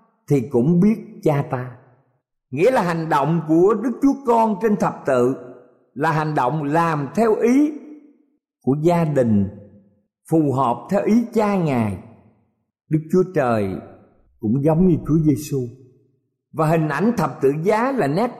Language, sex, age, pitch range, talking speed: Vietnamese, male, 50-69, 130-205 Hz, 155 wpm